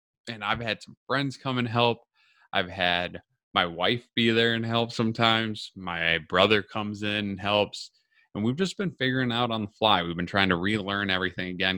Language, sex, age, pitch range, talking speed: English, male, 20-39, 95-125 Hz, 200 wpm